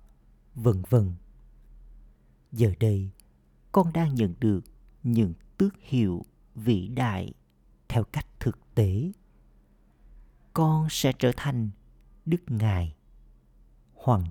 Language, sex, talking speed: Vietnamese, male, 100 wpm